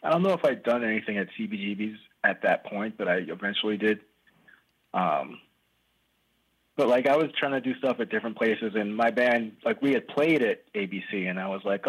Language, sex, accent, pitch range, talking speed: English, male, American, 100-125 Hz, 205 wpm